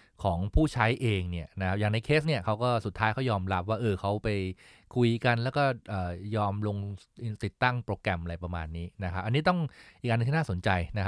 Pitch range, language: 90-120 Hz, English